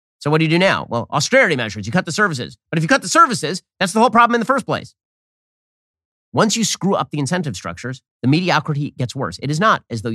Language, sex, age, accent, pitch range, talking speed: English, male, 30-49, American, 120-170 Hz, 255 wpm